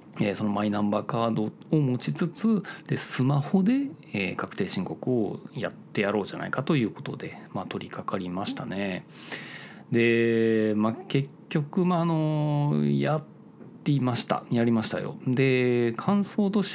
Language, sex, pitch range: Japanese, male, 110-175 Hz